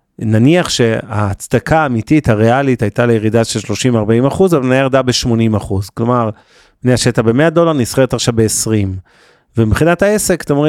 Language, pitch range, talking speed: Hebrew, 115-150 Hz, 140 wpm